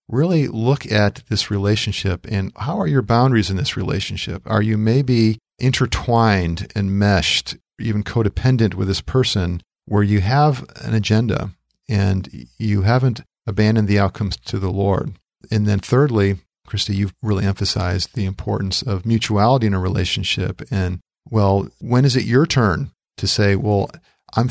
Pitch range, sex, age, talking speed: 95-115 Hz, male, 50-69, 155 wpm